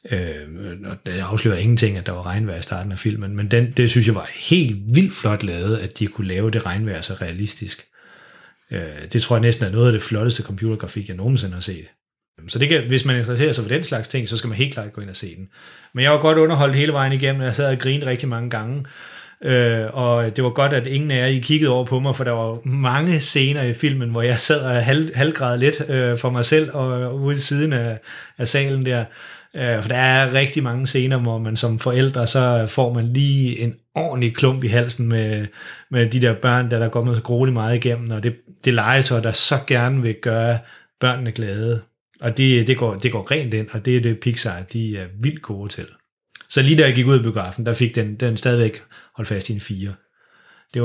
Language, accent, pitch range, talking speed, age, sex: Danish, native, 110-130 Hz, 225 wpm, 30-49, male